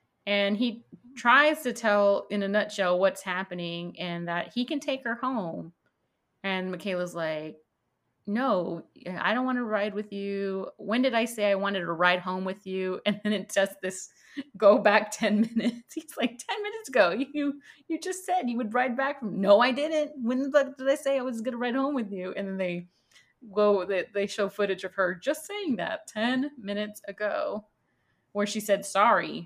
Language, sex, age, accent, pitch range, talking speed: English, female, 30-49, American, 190-245 Hz, 195 wpm